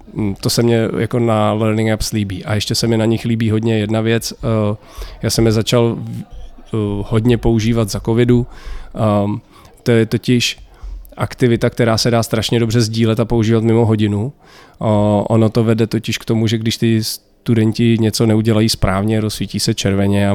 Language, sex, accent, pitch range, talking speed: Czech, male, native, 100-115 Hz, 170 wpm